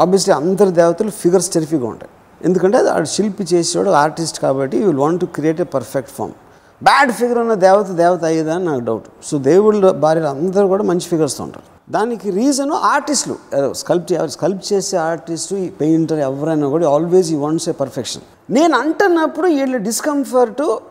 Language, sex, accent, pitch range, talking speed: Telugu, male, native, 155-240 Hz, 165 wpm